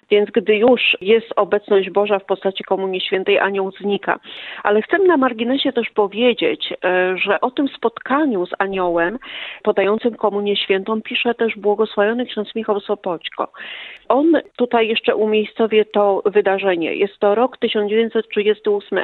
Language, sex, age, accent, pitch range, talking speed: Polish, female, 40-59, native, 195-230 Hz, 135 wpm